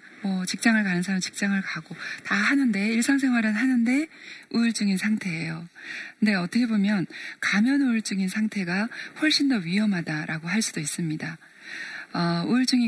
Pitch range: 175-240 Hz